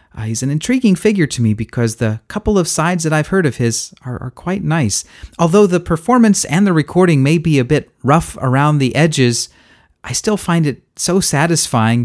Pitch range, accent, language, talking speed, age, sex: 115-160 Hz, American, English, 200 wpm, 40-59, male